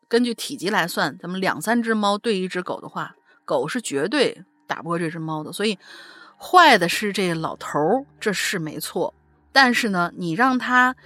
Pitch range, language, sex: 170-260 Hz, Chinese, female